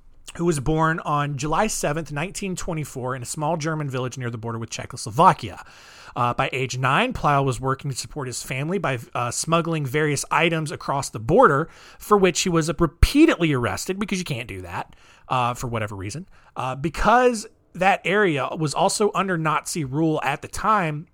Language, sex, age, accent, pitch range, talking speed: English, male, 30-49, American, 130-195 Hz, 180 wpm